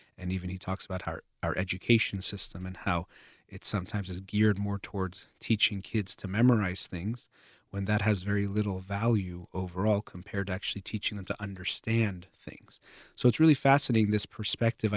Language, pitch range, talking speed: English, 95-110 Hz, 170 wpm